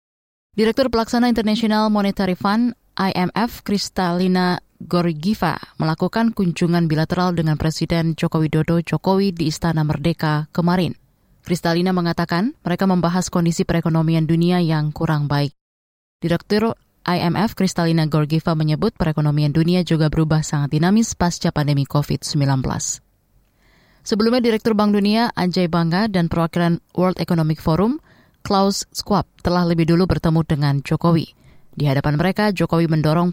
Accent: native